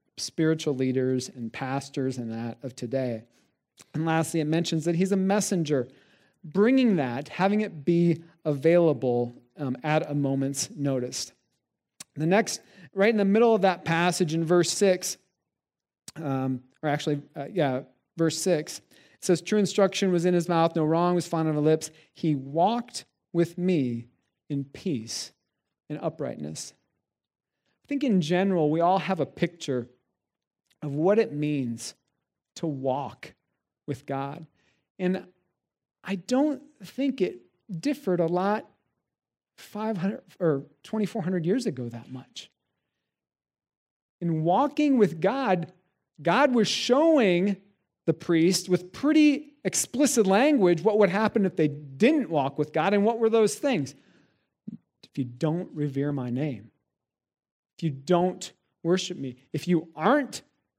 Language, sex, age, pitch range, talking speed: English, male, 40-59, 140-195 Hz, 140 wpm